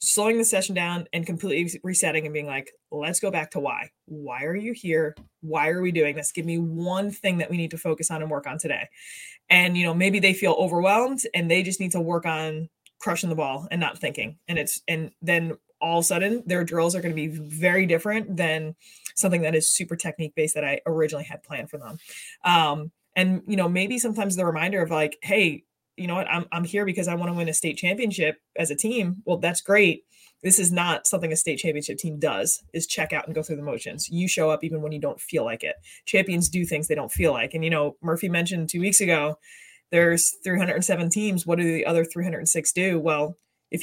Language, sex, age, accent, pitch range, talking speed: English, female, 20-39, American, 155-185 Hz, 235 wpm